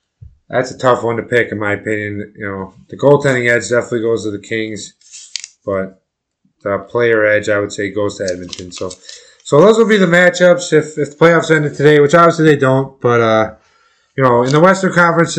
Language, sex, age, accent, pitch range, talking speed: English, male, 20-39, American, 115-155 Hz, 210 wpm